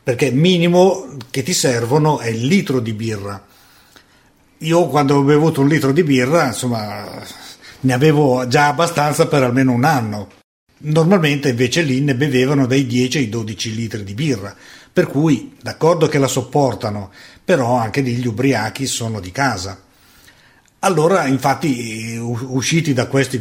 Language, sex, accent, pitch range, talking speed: Italian, male, native, 120-155 Hz, 150 wpm